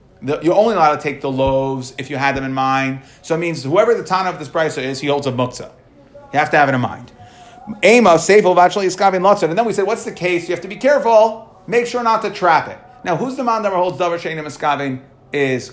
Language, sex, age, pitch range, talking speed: English, male, 30-49, 145-220 Hz, 245 wpm